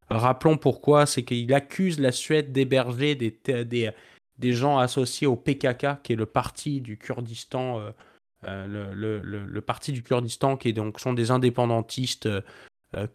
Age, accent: 20-39, French